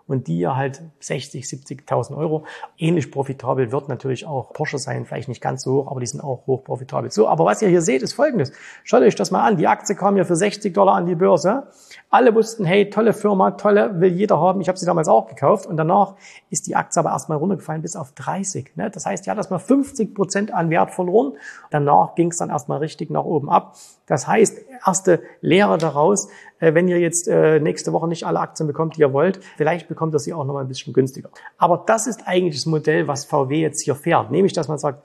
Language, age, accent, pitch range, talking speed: German, 40-59, German, 145-190 Hz, 230 wpm